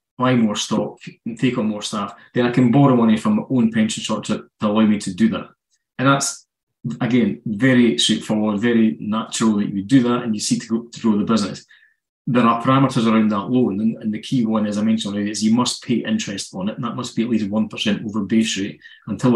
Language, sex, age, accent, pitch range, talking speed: English, male, 20-39, British, 105-125 Hz, 240 wpm